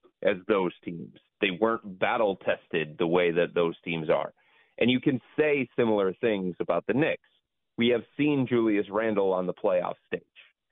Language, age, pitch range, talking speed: English, 30-49, 90-125 Hz, 170 wpm